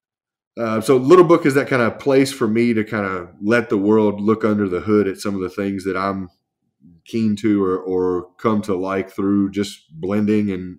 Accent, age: American, 20-39